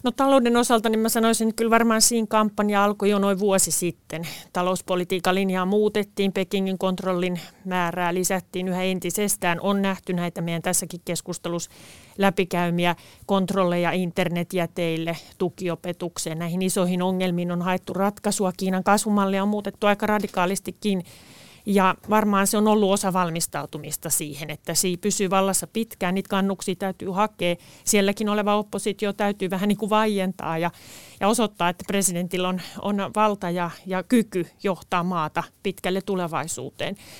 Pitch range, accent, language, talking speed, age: 180-210 Hz, native, Finnish, 140 wpm, 30-49